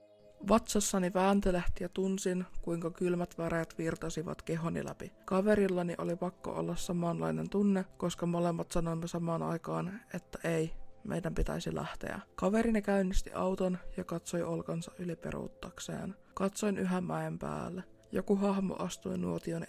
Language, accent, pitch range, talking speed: Finnish, native, 160-190 Hz, 125 wpm